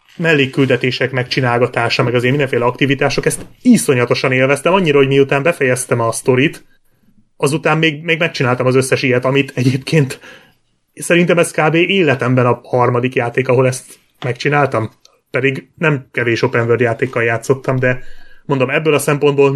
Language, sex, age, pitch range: Hungarian, male, 30-49, 120-145 Hz